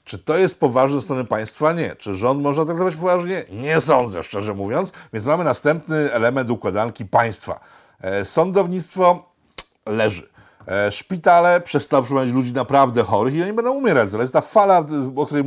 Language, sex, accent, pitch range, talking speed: Polish, male, native, 125-165 Hz, 160 wpm